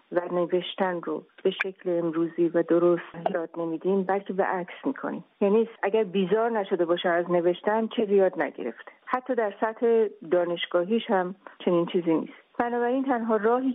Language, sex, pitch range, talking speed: Persian, female, 175-215 Hz, 155 wpm